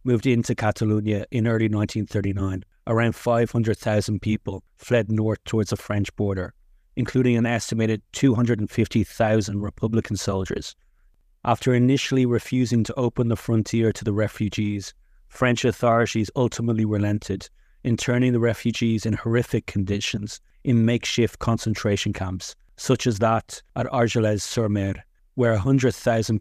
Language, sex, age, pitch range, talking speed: English, male, 30-49, 105-120 Hz, 125 wpm